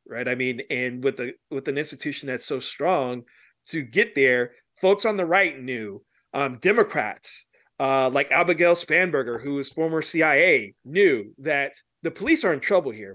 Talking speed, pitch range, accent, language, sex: 175 wpm, 135-165 Hz, American, English, male